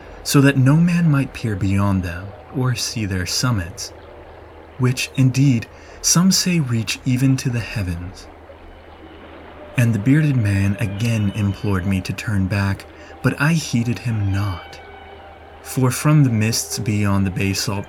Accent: American